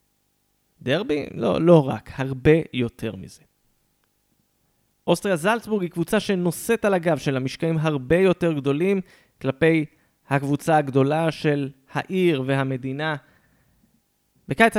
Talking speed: 105 wpm